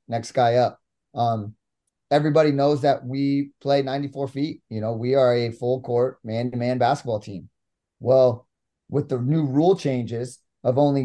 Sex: male